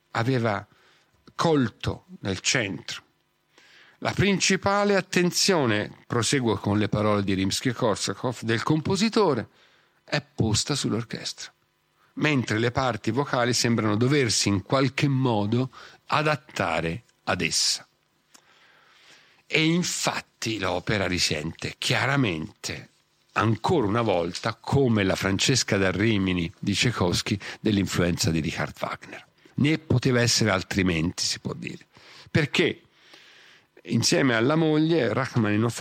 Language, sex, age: Italian, male, 50-69